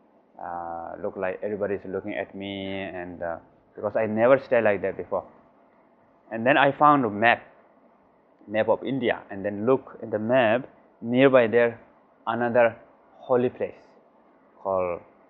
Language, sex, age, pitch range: Chinese, male, 20-39, 100-130 Hz